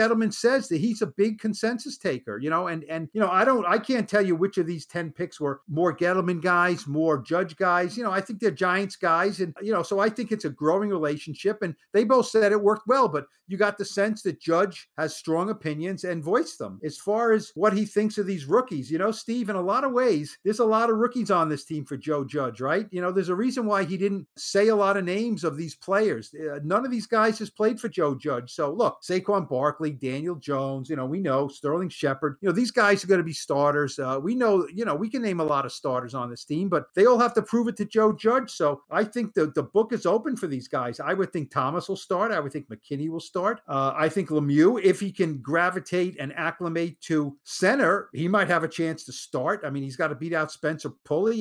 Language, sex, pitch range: English, male, 155-210 Hz